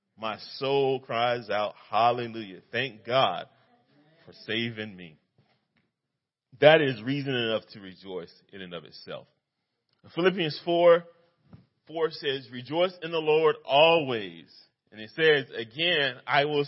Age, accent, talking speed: 40-59, American, 125 wpm